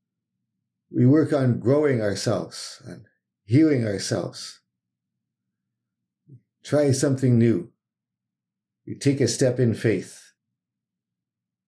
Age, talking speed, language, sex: 50-69, 85 wpm, English, male